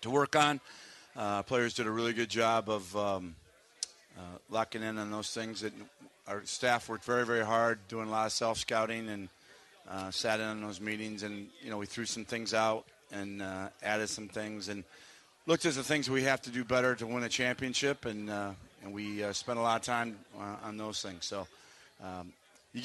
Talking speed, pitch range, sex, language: 215 wpm, 100-120 Hz, male, English